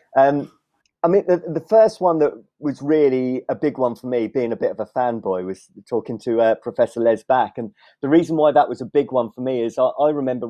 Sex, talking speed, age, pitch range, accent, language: male, 245 wpm, 30-49, 115-135 Hz, British, English